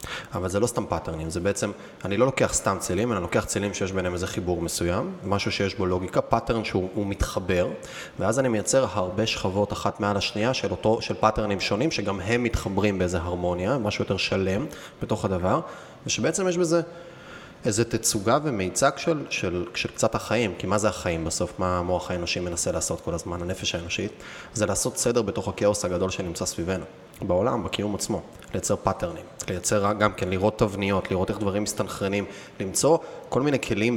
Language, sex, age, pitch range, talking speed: Hebrew, male, 20-39, 95-115 Hz, 180 wpm